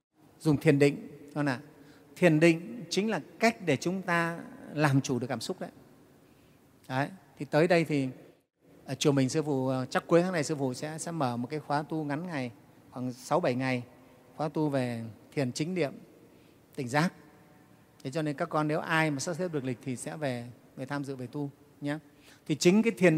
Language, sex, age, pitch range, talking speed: Vietnamese, male, 30-49, 135-170 Hz, 200 wpm